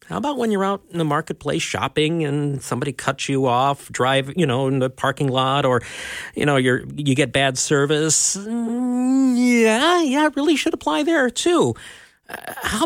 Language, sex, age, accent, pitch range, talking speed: English, male, 40-59, American, 130-195 Hz, 175 wpm